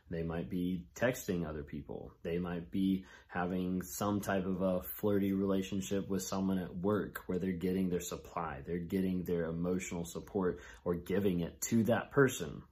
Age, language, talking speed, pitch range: 30-49, English, 170 wpm, 85-105 Hz